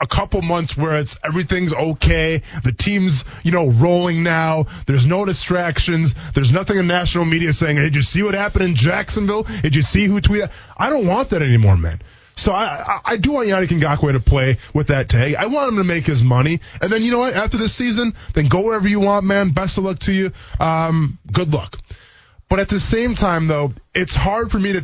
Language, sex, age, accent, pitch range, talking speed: English, male, 20-39, American, 130-185 Hz, 225 wpm